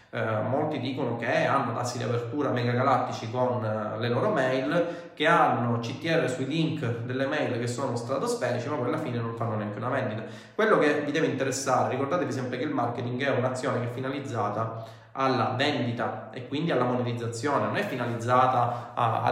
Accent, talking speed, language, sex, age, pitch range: native, 180 wpm, Italian, male, 20-39, 115-135 Hz